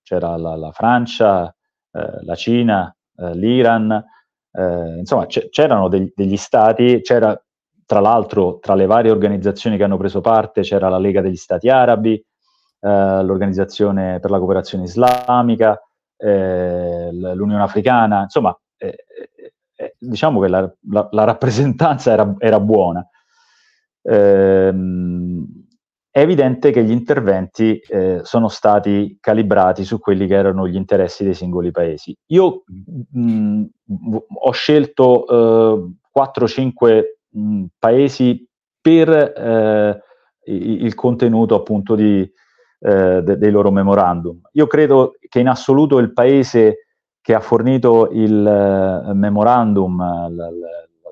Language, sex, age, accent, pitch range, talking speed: Italian, male, 30-49, native, 95-125 Hz, 120 wpm